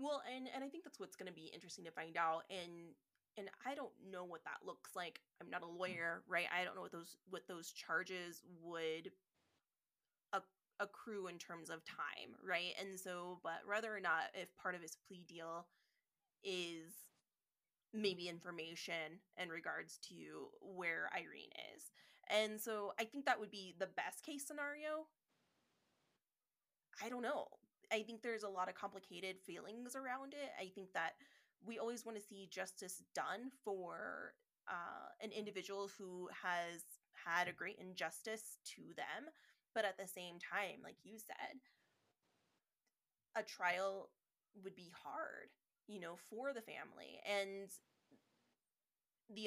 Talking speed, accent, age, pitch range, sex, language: 160 wpm, American, 20-39, 180-215 Hz, female, English